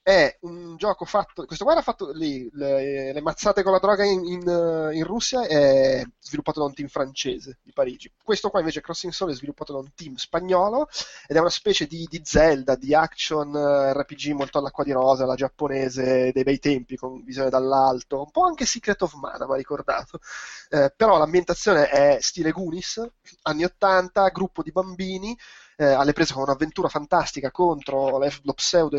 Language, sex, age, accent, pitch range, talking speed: Italian, male, 20-39, native, 135-175 Hz, 180 wpm